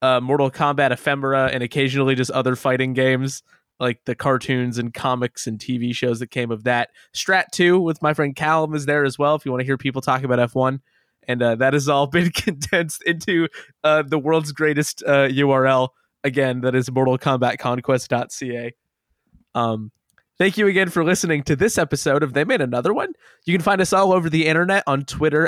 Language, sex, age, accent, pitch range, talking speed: English, male, 20-39, American, 130-165 Hz, 200 wpm